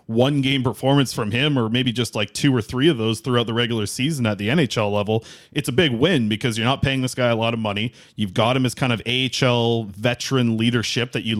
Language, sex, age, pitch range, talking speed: English, male, 30-49, 115-135 Hz, 245 wpm